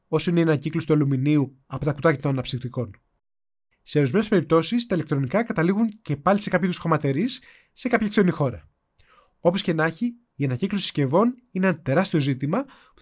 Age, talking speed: 20-39, 180 wpm